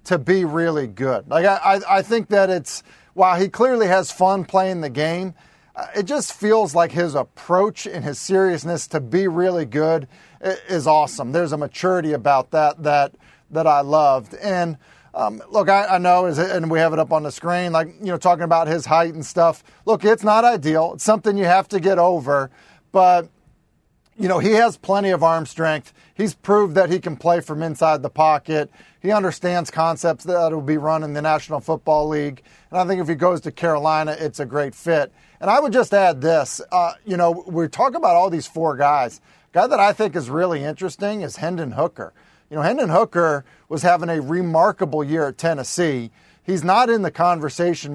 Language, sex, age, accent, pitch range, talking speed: English, male, 40-59, American, 155-190 Hz, 205 wpm